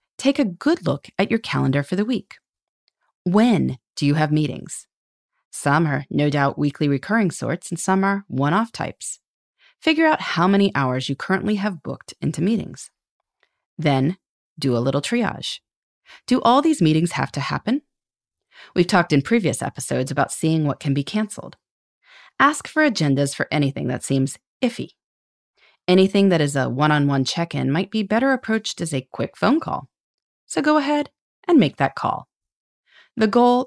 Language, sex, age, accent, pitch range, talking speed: English, female, 30-49, American, 140-220 Hz, 165 wpm